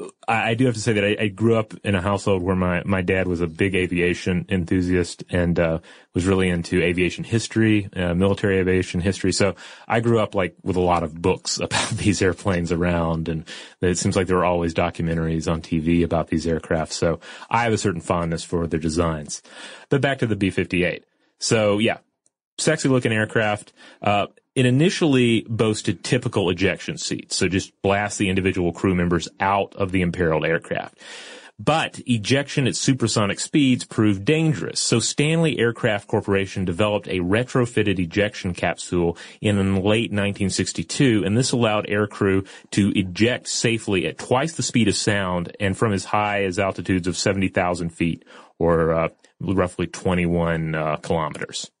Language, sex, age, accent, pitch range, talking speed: English, male, 30-49, American, 90-110 Hz, 170 wpm